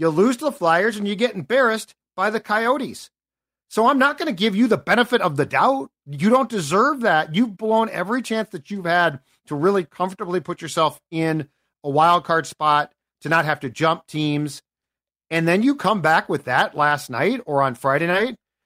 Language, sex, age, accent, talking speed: English, male, 40-59, American, 205 wpm